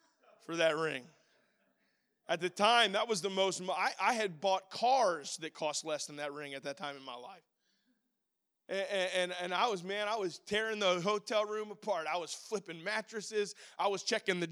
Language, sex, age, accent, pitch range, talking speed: English, male, 20-39, American, 205-245 Hz, 200 wpm